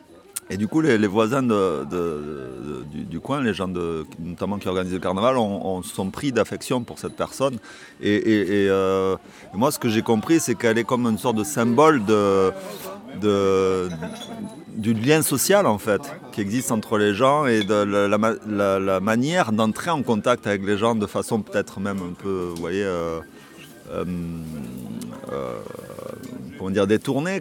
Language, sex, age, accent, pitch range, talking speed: French, male, 30-49, French, 95-115 Hz, 185 wpm